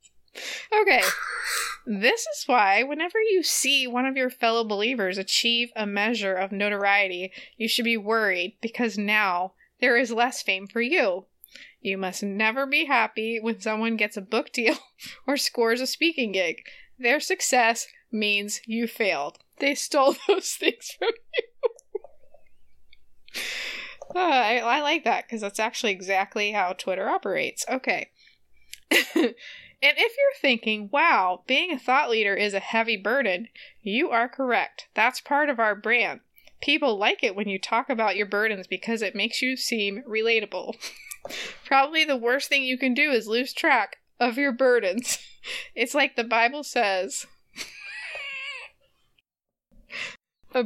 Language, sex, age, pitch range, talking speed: English, female, 20-39, 215-285 Hz, 145 wpm